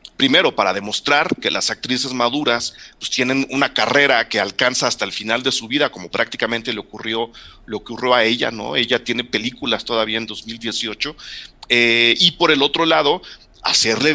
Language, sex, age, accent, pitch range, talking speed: Spanish, male, 40-59, Mexican, 110-135 Hz, 175 wpm